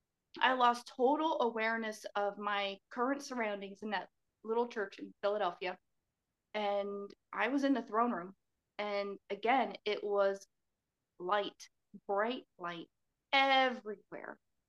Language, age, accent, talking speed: English, 30-49, American, 120 wpm